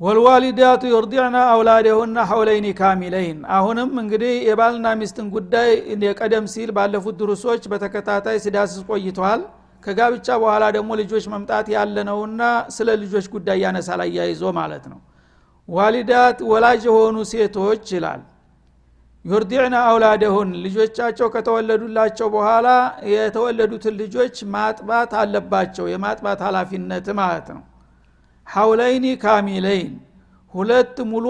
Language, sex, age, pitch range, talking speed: Amharic, male, 60-79, 195-225 Hz, 95 wpm